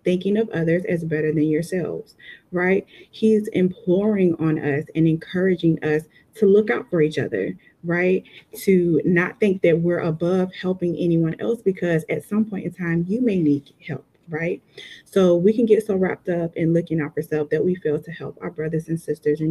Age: 20-39